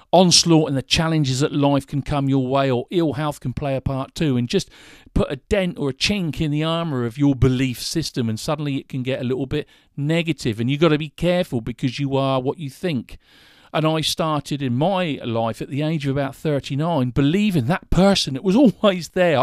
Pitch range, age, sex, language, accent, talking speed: 135-170 Hz, 50-69, male, English, British, 225 wpm